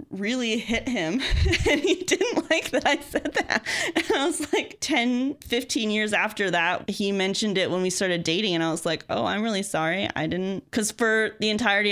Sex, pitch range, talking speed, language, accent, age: female, 180-240 Hz, 200 wpm, English, American, 20-39